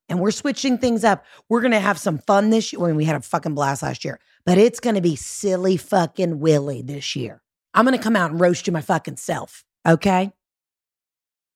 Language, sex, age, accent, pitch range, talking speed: English, female, 30-49, American, 160-215 Hz, 230 wpm